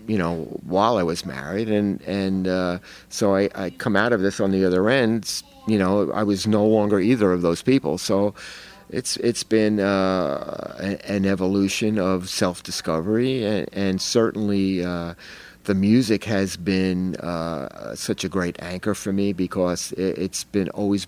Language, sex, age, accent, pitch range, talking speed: English, male, 50-69, American, 90-100 Hz, 170 wpm